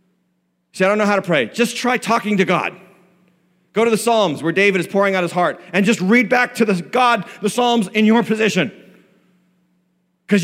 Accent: American